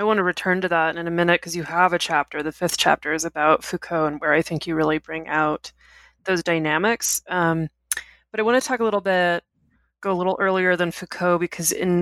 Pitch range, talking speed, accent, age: 155-190 Hz, 235 wpm, American, 20-39